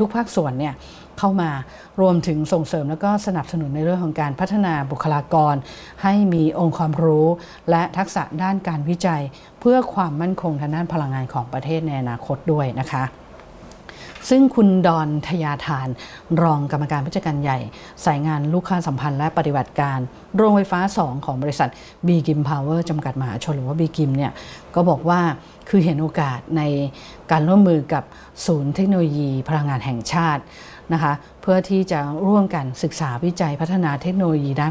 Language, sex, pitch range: English, female, 145-180 Hz